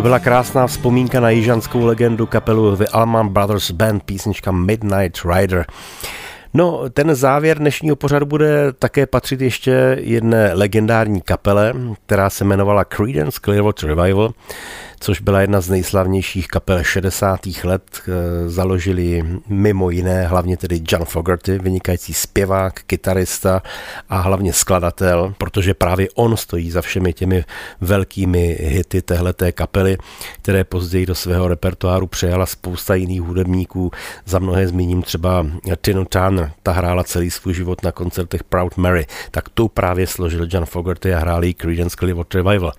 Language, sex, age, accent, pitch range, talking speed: Czech, male, 40-59, native, 90-110 Hz, 140 wpm